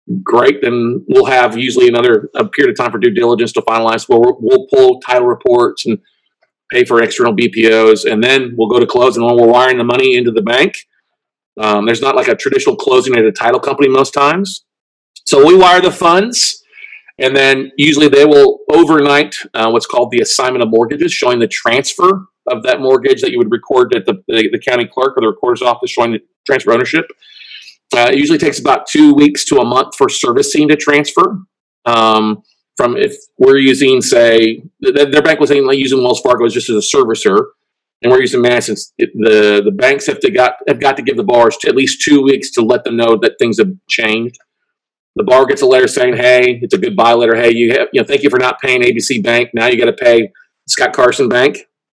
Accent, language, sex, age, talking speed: American, English, male, 40-59, 220 wpm